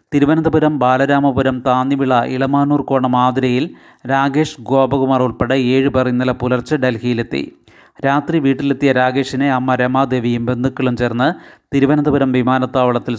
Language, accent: Malayalam, native